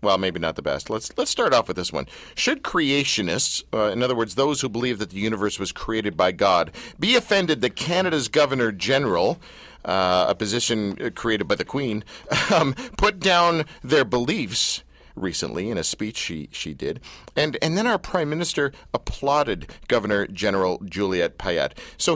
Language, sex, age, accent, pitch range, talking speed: English, male, 50-69, American, 105-165 Hz, 175 wpm